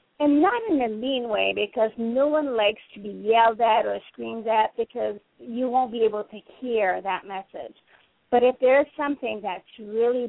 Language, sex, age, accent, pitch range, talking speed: English, female, 40-59, American, 215-275 Hz, 185 wpm